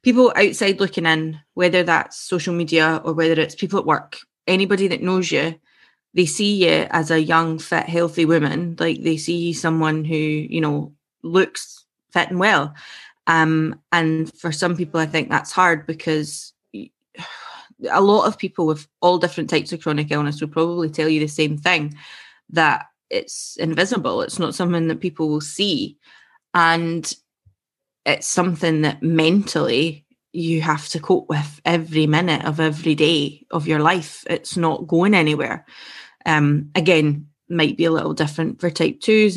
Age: 20-39